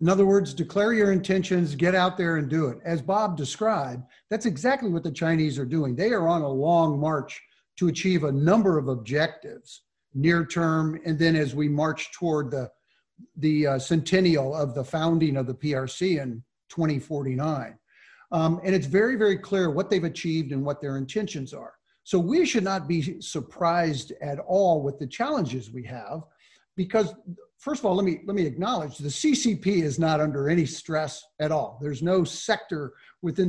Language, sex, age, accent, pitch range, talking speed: English, male, 50-69, American, 150-185 Hz, 185 wpm